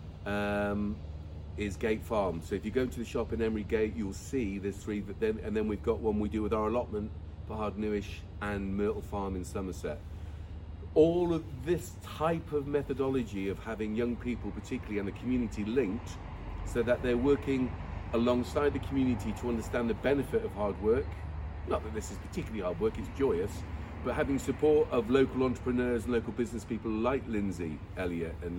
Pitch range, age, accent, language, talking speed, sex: 95-125 Hz, 40-59, British, English, 190 wpm, male